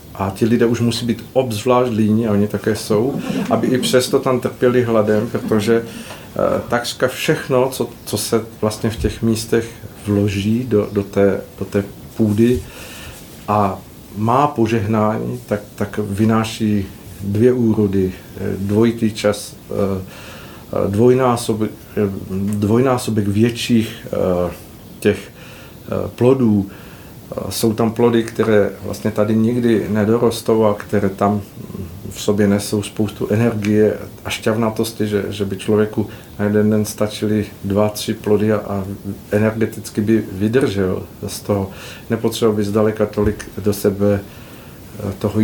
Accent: native